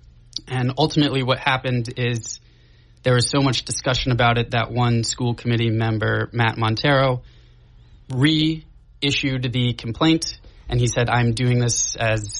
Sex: male